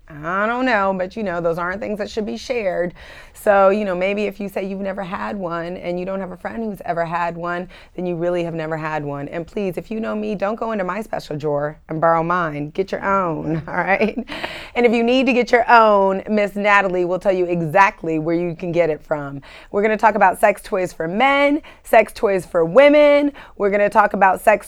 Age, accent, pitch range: 30-49, American, 175-225 Hz